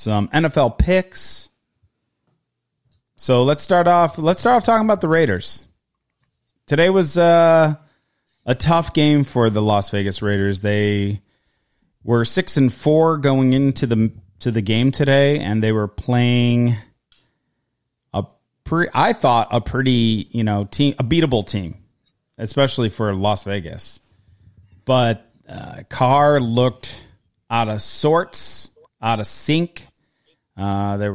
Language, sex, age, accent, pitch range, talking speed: English, male, 30-49, American, 110-155 Hz, 135 wpm